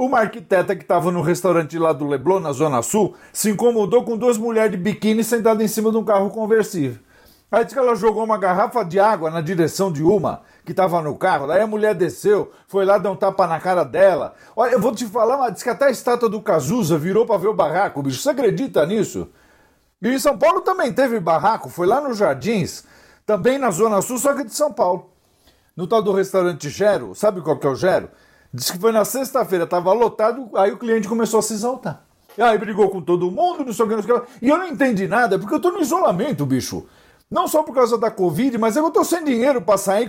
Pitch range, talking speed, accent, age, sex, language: 185-250 Hz, 235 wpm, Brazilian, 50-69, male, Portuguese